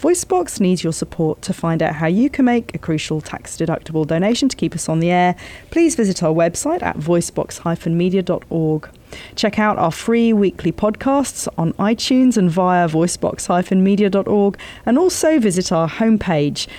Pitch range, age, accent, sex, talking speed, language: 165-225 Hz, 40-59, British, female, 155 wpm, English